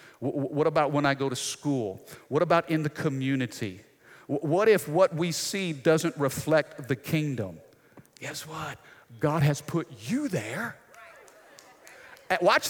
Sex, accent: male, American